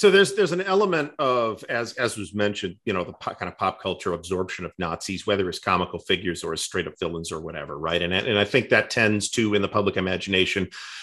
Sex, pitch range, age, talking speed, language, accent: male, 90-120 Hz, 40-59, 235 wpm, English, American